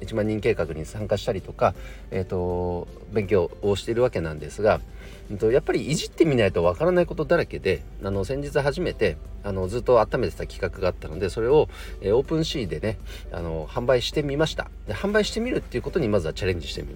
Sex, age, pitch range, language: male, 40-59, 85-140 Hz, Japanese